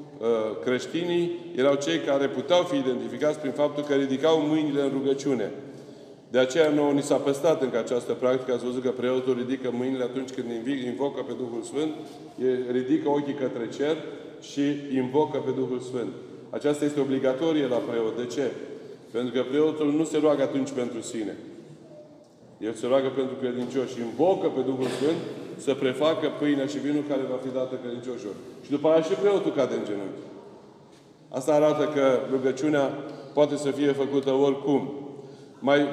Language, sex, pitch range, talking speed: Romanian, male, 130-155 Hz, 160 wpm